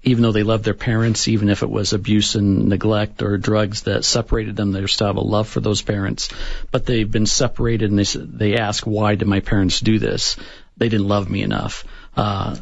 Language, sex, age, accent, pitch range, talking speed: English, male, 50-69, American, 105-120 Hz, 215 wpm